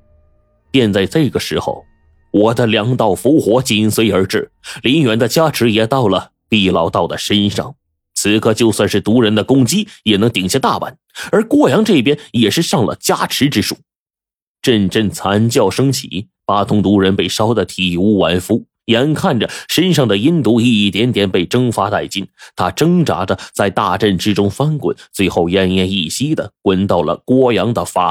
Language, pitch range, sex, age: Chinese, 95-125 Hz, male, 30-49